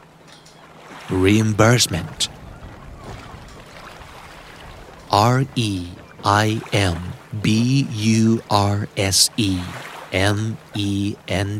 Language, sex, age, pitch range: Thai, male, 50-69, 100-125 Hz